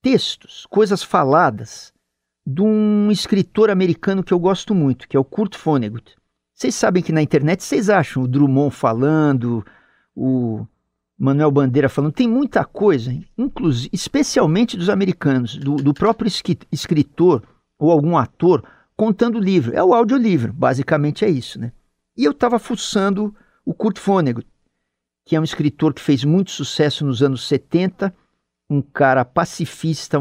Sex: male